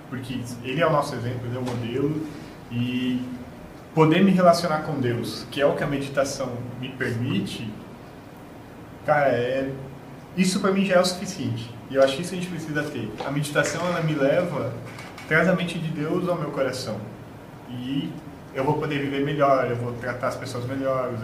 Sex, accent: male, Brazilian